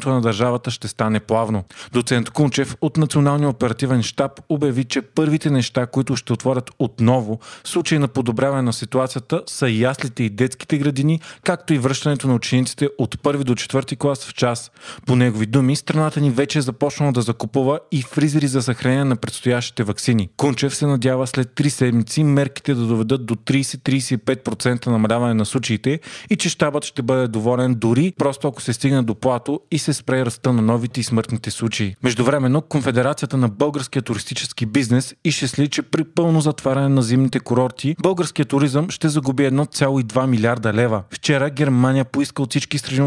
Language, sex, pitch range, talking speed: Bulgarian, male, 125-145 Hz, 170 wpm